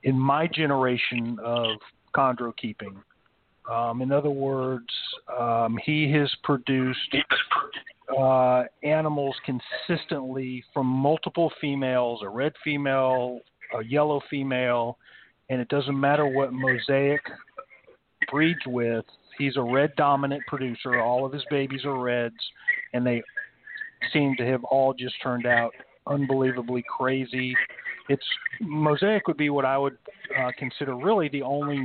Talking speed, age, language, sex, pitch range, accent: 130 wpm, 40-59, English, male, 120-140 Hz, American